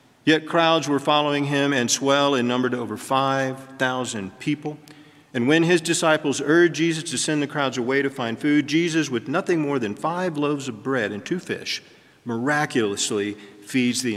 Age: 40-59